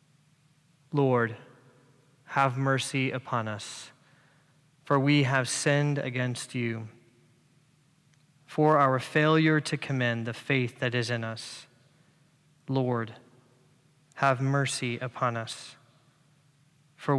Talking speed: 100 wpm